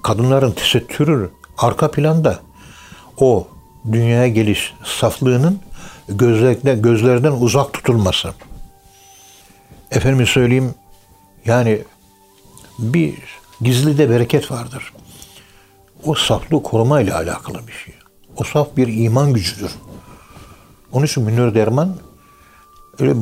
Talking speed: 95 wpm